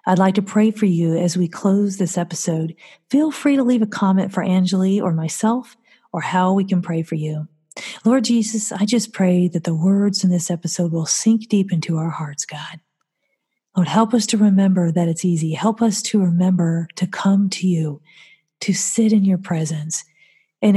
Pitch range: 175-210 Hz